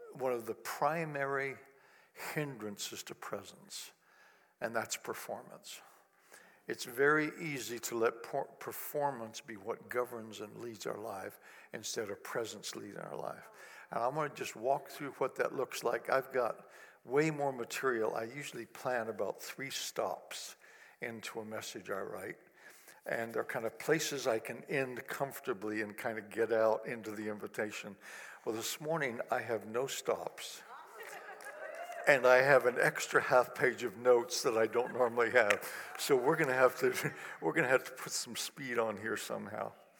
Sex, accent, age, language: male, American, 60-79, English